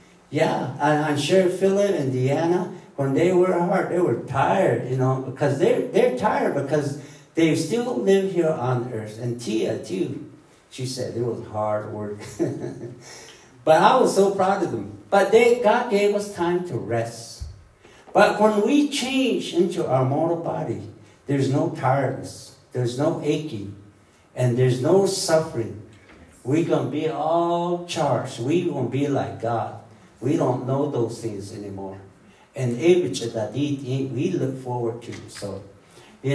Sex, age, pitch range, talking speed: male, 60-79, 120-170 Hz, 155 wpm